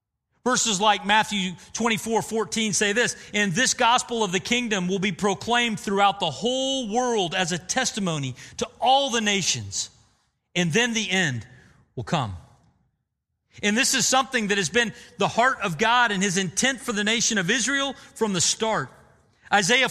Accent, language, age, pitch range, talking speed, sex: American, English, 40-59, 155-235 Hz, 170 wpm, male